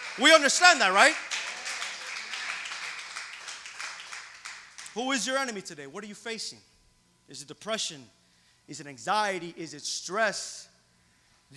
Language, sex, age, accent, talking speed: English, male, 30-49, American, 120 wpm